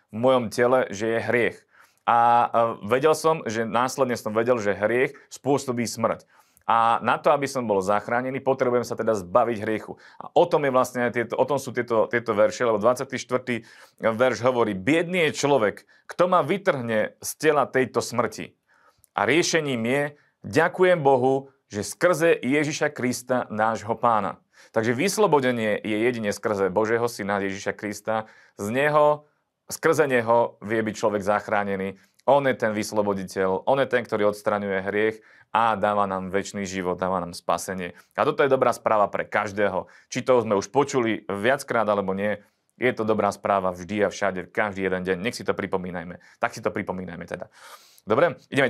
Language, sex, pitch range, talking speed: Slovak, male, 105-130 Hz, 170 wpm